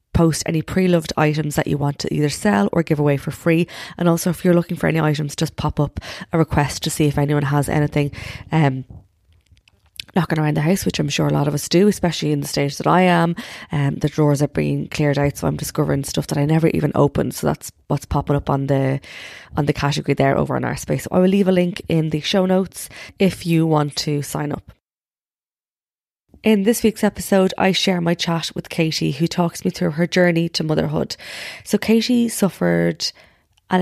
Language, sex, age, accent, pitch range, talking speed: English, female, 20-39, Irish, 150-180 Hz, 220 wpm